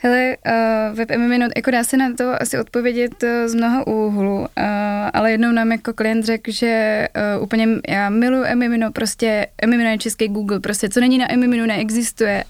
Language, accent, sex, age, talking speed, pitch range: Czech, native, female, 20-39, 170 wpm, 200-220 Hz